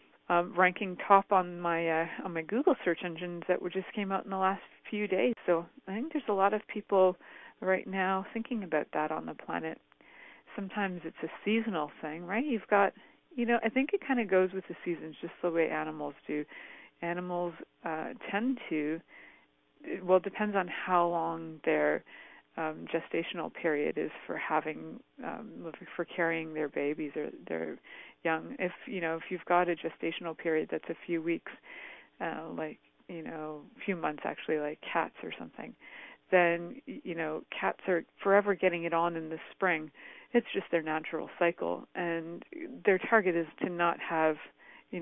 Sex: female